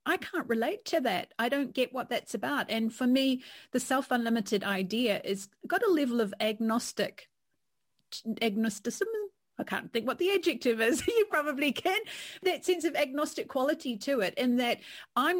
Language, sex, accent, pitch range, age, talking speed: English, female, Australian, 205-260 Hz, 40-59, 170 wpm